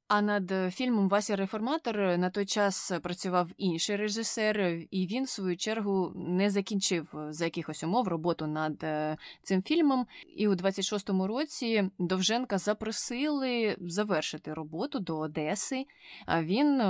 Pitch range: 165-205 Hz